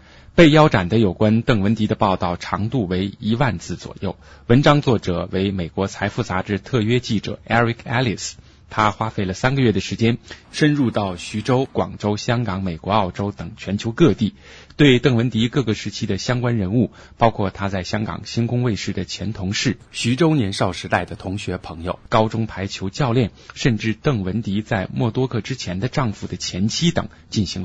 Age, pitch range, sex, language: 20-39, 95-115 Hz, male, Chinese